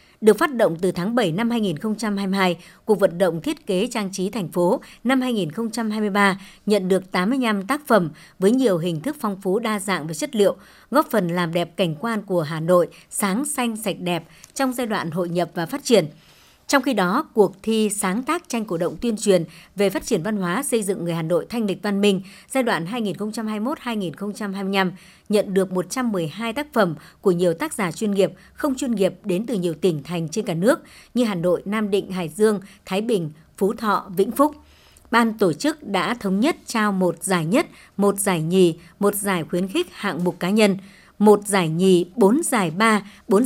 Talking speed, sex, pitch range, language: 205 wpm, male, 180-230 Hz, Vietnamese